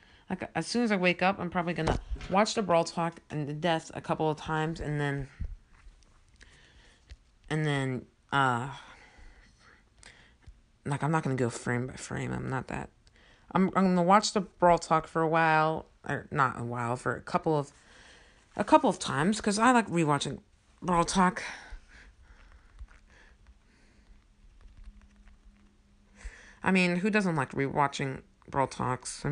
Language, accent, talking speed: English, American, 150 wpm